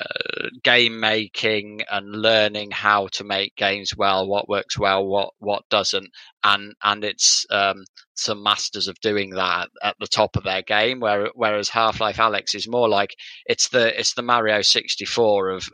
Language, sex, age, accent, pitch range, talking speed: English, male, 20-39, British, 100-115 Hz, 170 wpm